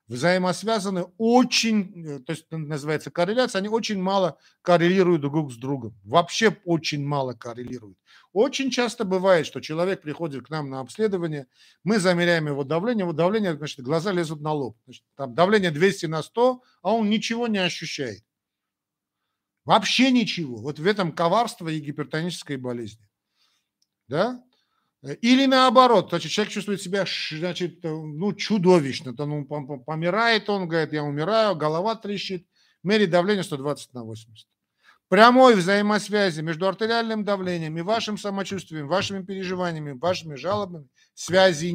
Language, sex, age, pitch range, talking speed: Russian, male, 50-69, 145-200 Hz, 135 wpm